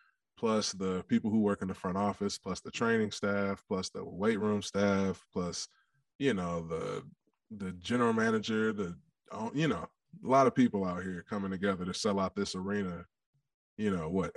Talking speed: 185 wpm